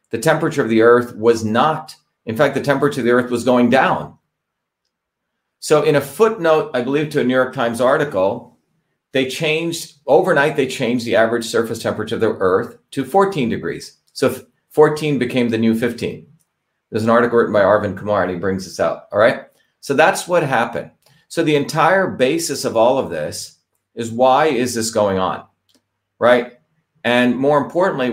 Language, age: English, 40-59